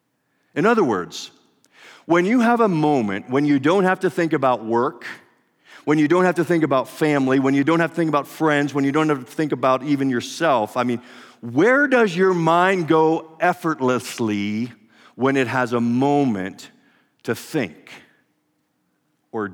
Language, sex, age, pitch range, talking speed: English, male, 50-69, 120-160 Hz, 175 wpm